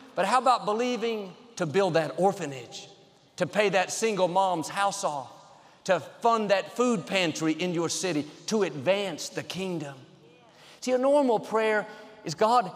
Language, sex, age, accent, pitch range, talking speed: English, male, 50-69, American, 175-220 Hz, 155 wpm